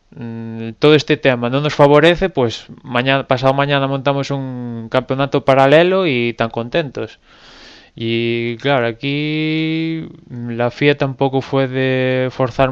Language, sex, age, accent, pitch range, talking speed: Spanish, male, 20-39, Spanish, 120-145 Hz, 125 wpm